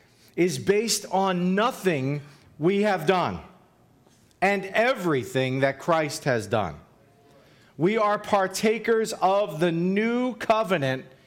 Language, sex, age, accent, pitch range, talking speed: English, male, 40-59, American, 135-195 Hz, 105 wpm